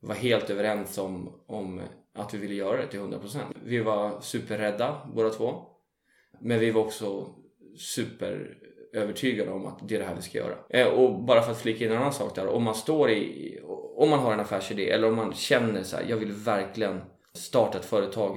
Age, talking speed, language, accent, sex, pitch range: 20-39, 195 wpm, Swedish, native, male, 105-120 Hz